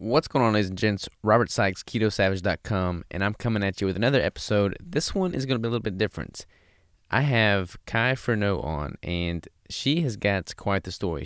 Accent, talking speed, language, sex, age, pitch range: American, 210 wpm, English, male, 20-39, 90-105 Hz